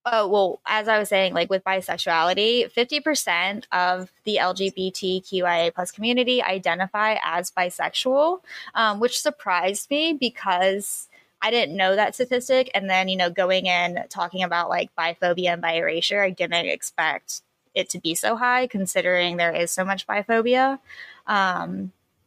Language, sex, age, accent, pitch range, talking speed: English, female, 10-29, American, 180-225 Hz, 150 wpm